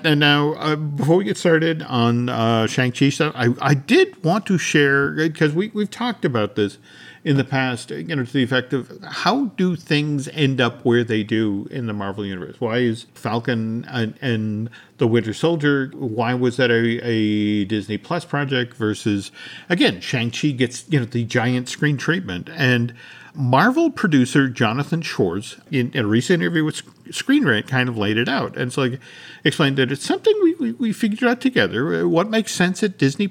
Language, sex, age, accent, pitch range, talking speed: English, male, 50-69, American, 125-185 Hz, 190 wpm